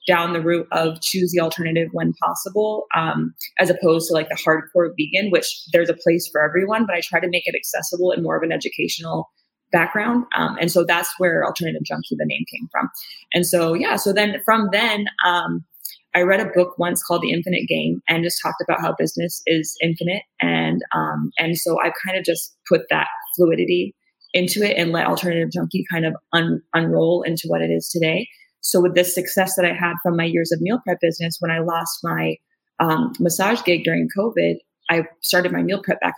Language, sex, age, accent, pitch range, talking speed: English, female, 20-39, American, 165-185 Hz, 210 wpm